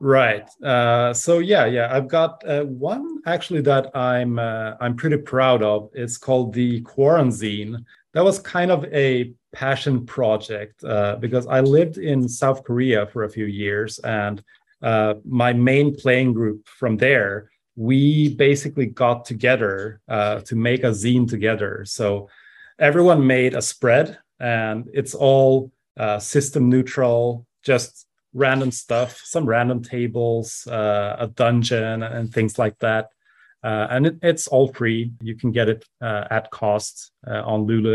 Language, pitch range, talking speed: English, 110-130 Hz, 150 wpm